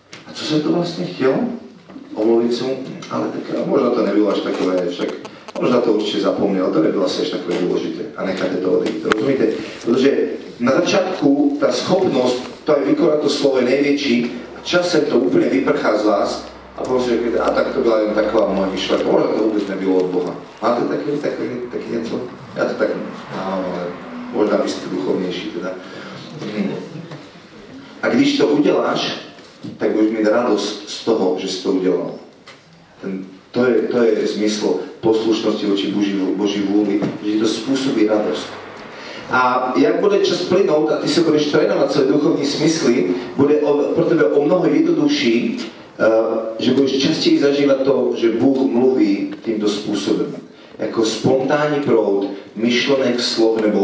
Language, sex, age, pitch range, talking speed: Slovak, male, 40-59, 105-145 Hz, 160 wpm